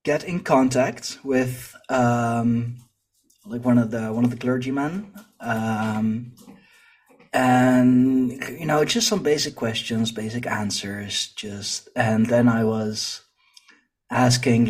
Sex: male